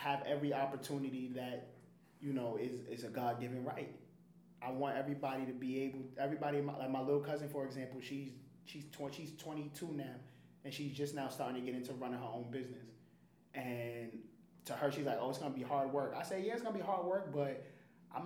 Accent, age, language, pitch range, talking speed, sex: American, 20-39, English, 130-150 Hz, 215 wpm, male